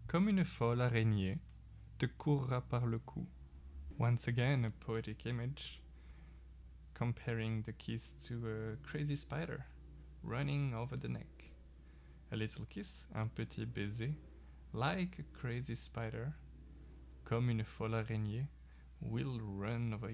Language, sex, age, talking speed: French, male, 20-39, 125 wpm